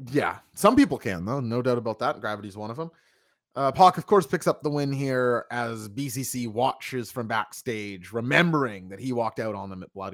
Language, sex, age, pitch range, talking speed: English, male, 30-49, 140-195 Hz, 215 wpm